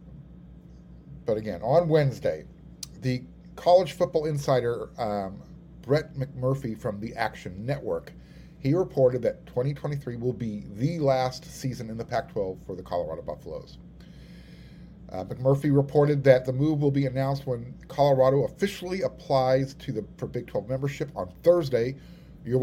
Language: English